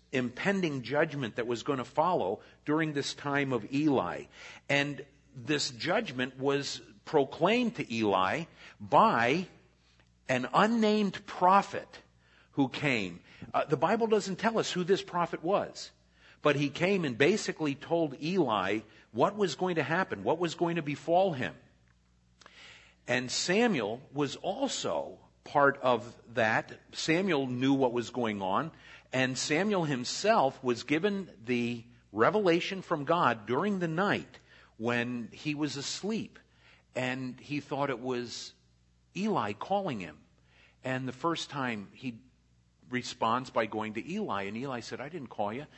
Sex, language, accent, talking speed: male, Italian, American, 140 wpm